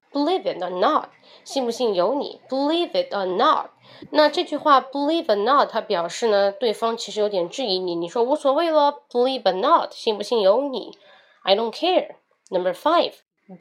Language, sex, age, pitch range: Chinese, female, 20-39, 200-300 Hz